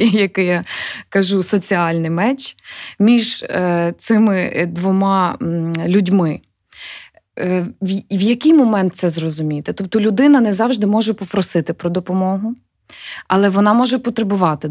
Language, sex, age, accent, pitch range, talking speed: Ukrainian, female, 20-39, native, 180-225 Hz, 105 wpm